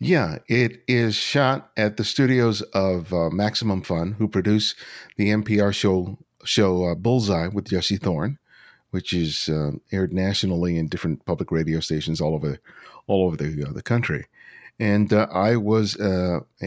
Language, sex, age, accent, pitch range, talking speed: English, male, 50-69, American, 85-105 Hz, 165 wpm